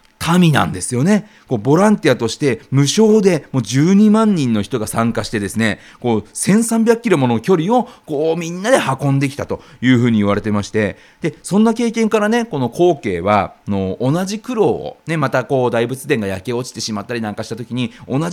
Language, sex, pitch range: Japanese, male, 125-200 Hz